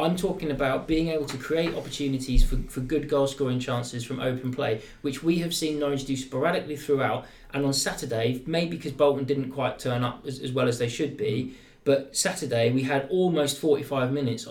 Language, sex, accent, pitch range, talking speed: English, male, British, 130-165 Hz, 200 wpm